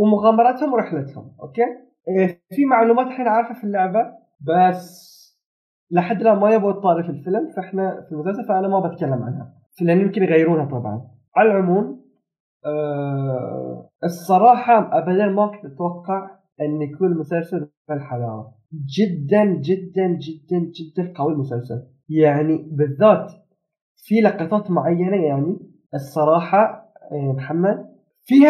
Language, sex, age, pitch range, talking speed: Arabic, male, 20-39, 150-210 Hz, 120 wpm